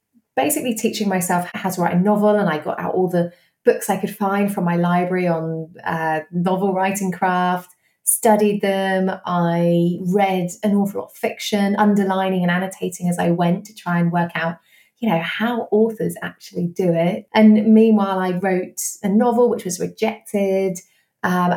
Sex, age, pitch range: female, 20-39, 175-215 Hz